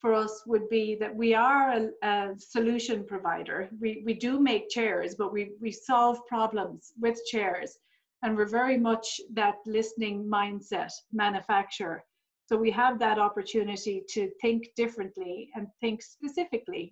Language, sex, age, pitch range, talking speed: English, female, 40-59, 210-240 Hz, 150 wpm